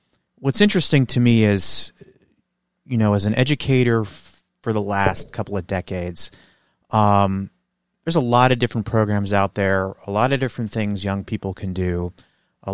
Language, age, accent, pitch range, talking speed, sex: English, 30-49, American, 95-120 Hz, 170 wpm, male